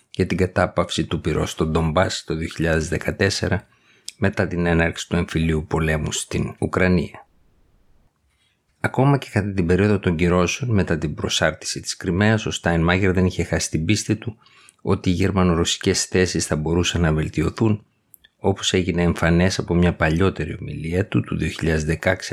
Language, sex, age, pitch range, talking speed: Greek, male, 50-69, 85-100 Hz, 150 wpm